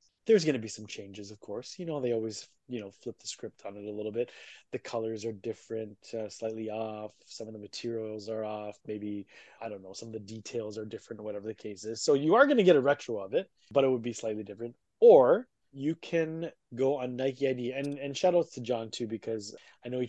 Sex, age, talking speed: male, 20-39, 250 wpm